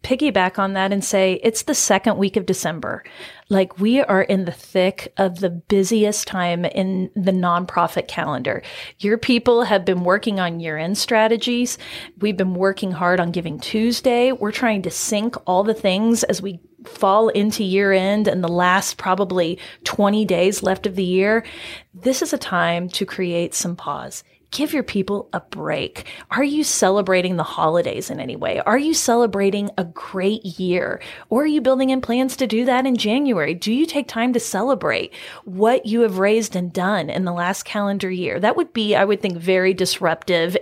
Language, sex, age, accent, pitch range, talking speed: English, female, 30-49, American, 180-225 Hz, 185 wpm